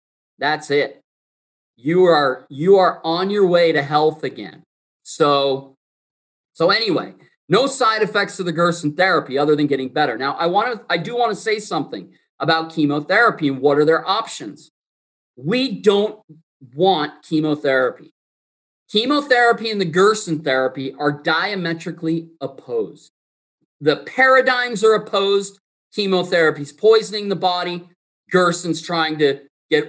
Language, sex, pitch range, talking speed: English, male, 150-210 Hz, 135 wpm